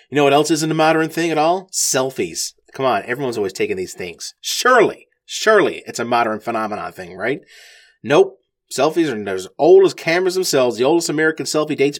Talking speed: 195 wpm